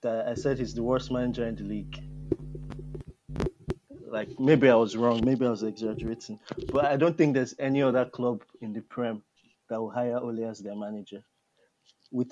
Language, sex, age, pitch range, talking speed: English, male, 20-39, 115-140 Hz, 180 wpm